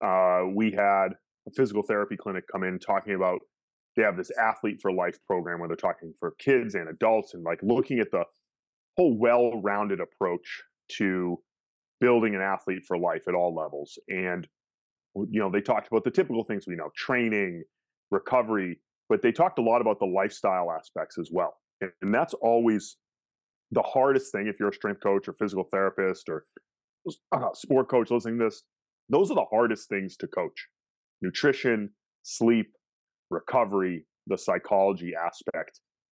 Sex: male